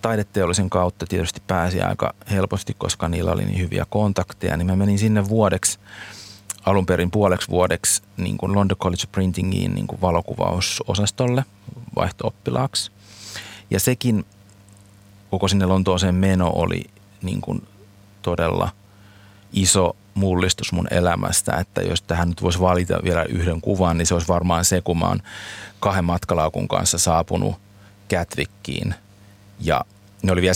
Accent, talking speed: native, 135 wpm